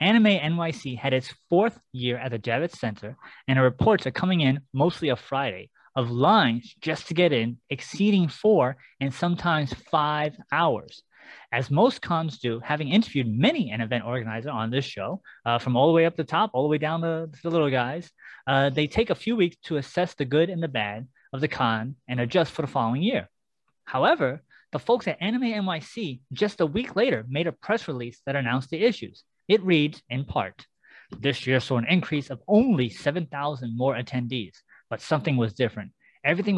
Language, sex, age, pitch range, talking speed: English, male, 20-39, 130-175 Hz, 195 wpm